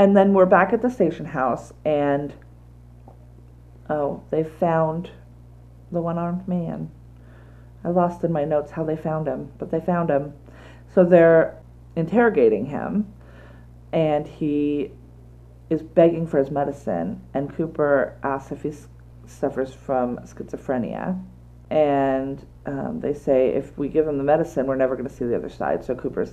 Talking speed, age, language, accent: 155 wpm, 40-59, English, American